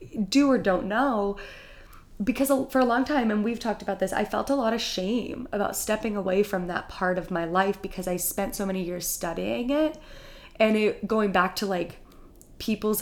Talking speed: 200 wpm